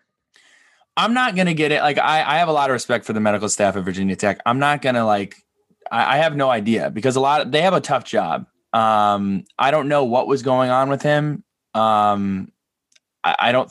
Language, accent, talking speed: English, American, 235 wpm